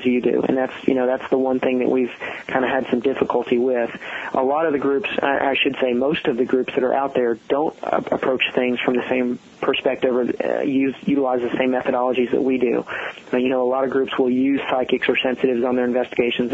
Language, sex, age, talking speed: English, male, 30-49, 240 wpm